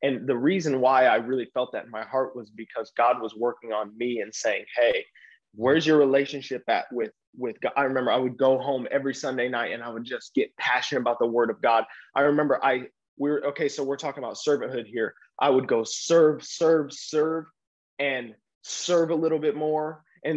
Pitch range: 120-150 Hz